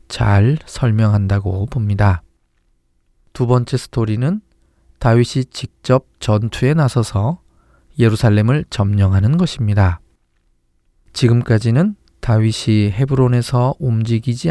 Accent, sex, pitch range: native, male, 100-130 Hz